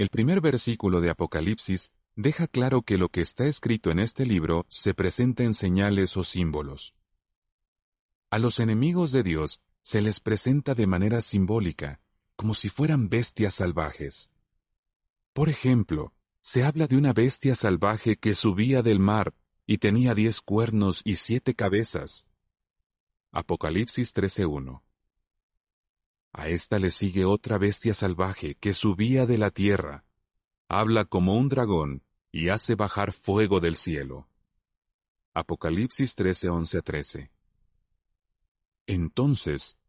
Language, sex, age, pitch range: Spanish, male, 40-59, 90-120 Hz